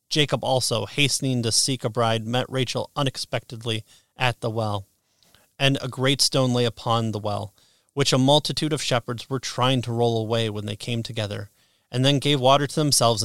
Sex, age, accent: male, 30-49, American